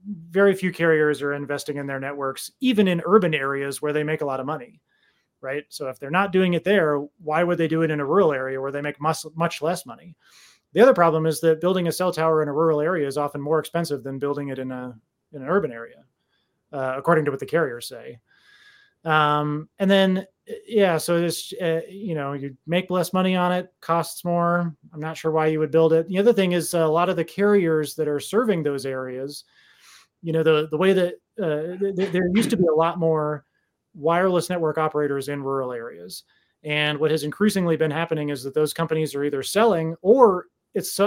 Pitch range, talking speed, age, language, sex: 145-180 Hz, 220 wpm, 30-49, English, male